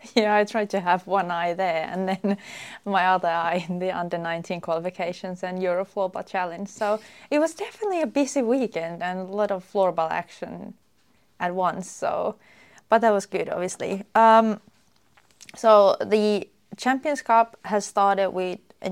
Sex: female